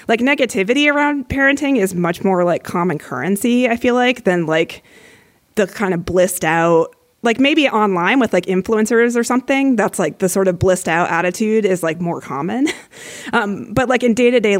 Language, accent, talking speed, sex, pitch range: English, American, 195 wpm, female, 175-240 Hz